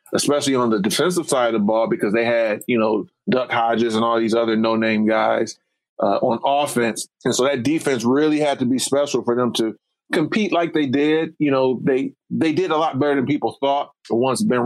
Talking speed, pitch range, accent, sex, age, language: 215 wpm, 120-155 Hz, American, male, 30-49, English